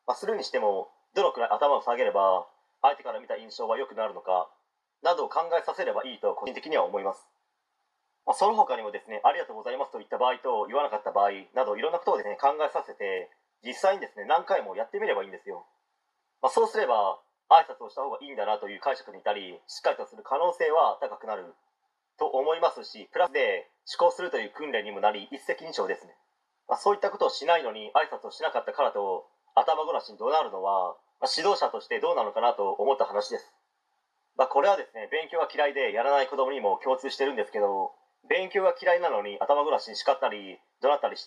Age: 30-49